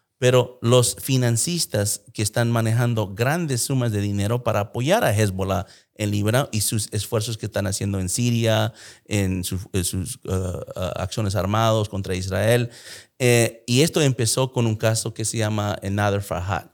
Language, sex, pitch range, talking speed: English, male, 100-120 Hz, 160 wpm